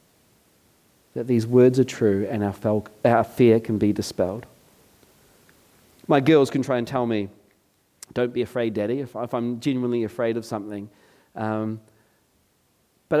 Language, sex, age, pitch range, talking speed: English, male, 40-59, 105-125 Hz, 145 wpm